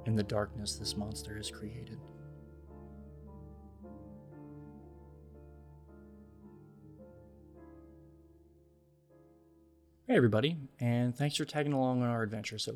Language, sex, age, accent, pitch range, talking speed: English, male, 20-39, American, 105-135 Hz, 85 wpm